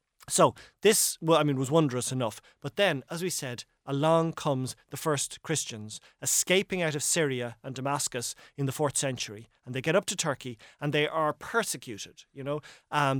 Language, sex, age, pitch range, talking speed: English, male, 30-49, 125-160 Hz, 185 wpm